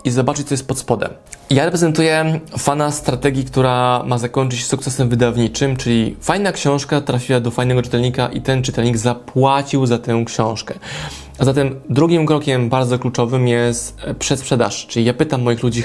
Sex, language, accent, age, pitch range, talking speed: male, Polish, native, 20-39, 125-150 Hz, 165 wpm